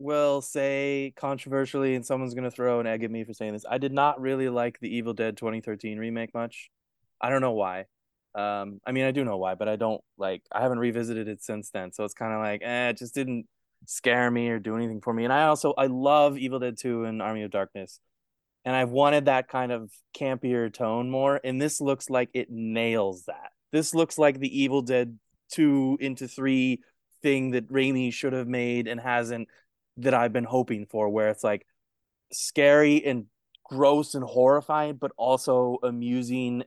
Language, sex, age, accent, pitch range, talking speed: English, male, 20-39, American, 115-135 Hz, 200 wpm